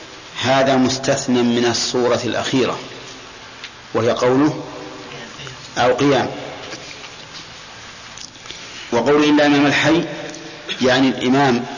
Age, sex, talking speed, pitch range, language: 50-69, male, 70 wpm, 125-140 Hz, Arabic